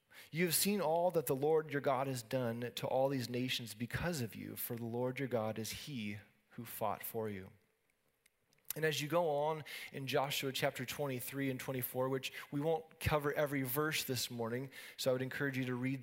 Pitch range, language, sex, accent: 120-145 Hz, English, male, American